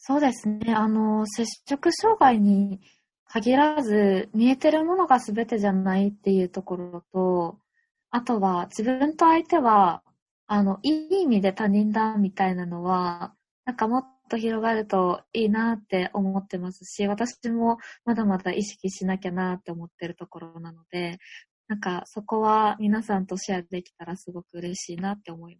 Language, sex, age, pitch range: Japanese, female, 20-39, 185-230 Hz